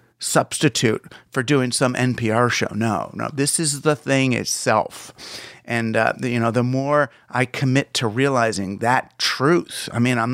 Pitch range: 120-160 Hz